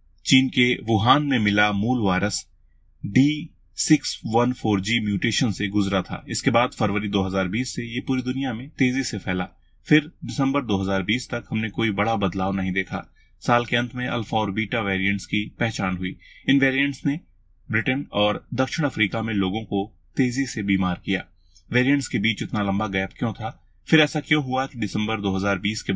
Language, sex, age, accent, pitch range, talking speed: Hindi, male, 30-49, native, 100-130 Hz, 175 wpm